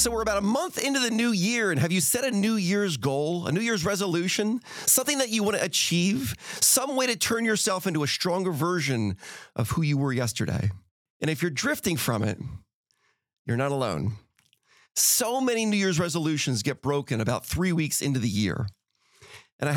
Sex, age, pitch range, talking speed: male, 40-59, 135-200 Hz, 195 wpm